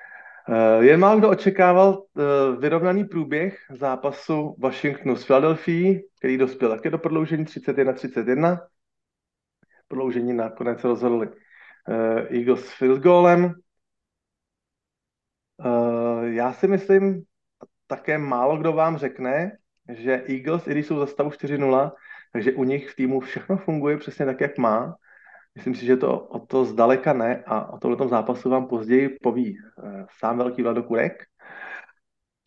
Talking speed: 135 wpm